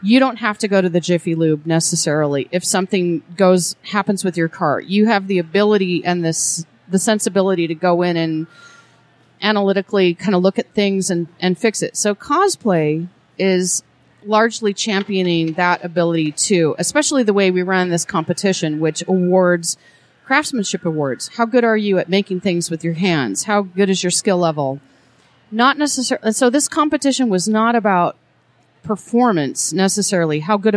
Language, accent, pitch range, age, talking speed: English, American, 170-210 Hz, 40-59, 170 wpm